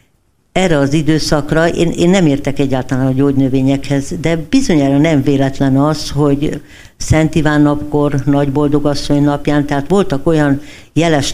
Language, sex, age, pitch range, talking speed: Hungarian, female, 60-79, 140-160 Hz, 140 wpm